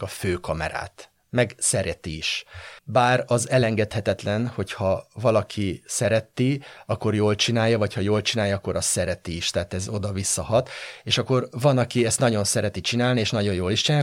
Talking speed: 165 wpm